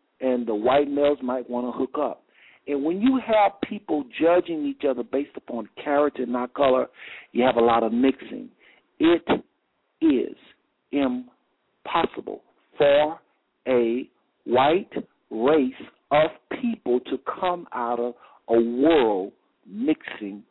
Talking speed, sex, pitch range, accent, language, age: 130 wpm, male, 120-180 Hz, American, English, 60-79